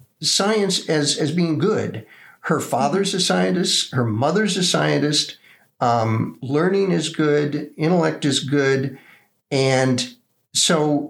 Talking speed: 120 wpm